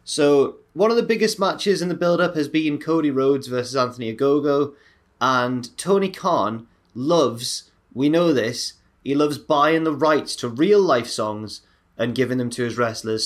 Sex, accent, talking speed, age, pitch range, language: male, British, 170 wpm, 20-39, 120-160 Hz, English